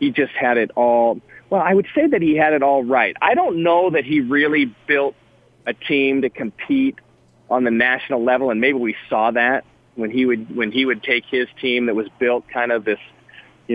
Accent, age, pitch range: American, 40-59, 115-135 Hz